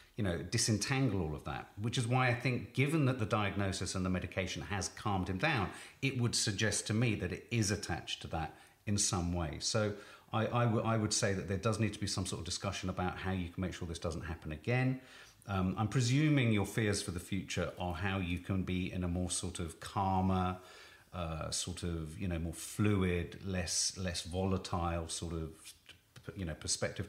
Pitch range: 90-115 Hz